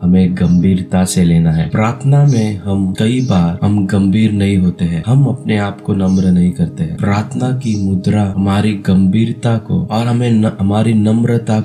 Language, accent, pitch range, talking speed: Hindi, native, 95-110 Hz, 170 wpm